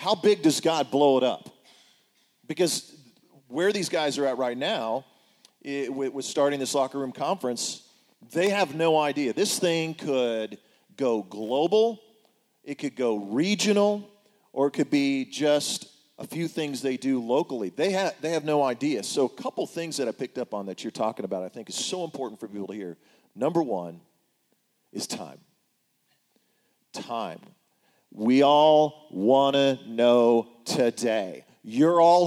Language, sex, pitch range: English, male, 130-190 Hz